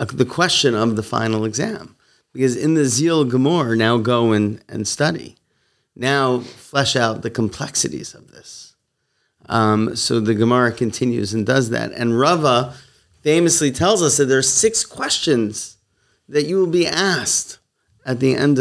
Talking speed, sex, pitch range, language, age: 155 wpm, male, 110-135 Hz, English, 30-49